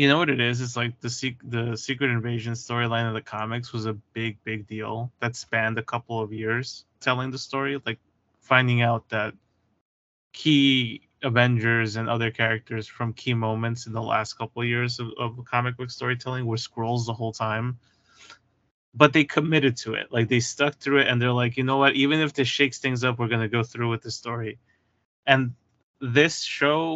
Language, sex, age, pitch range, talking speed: Italian, male, 20-39, 115-135 Hz, 205 wpm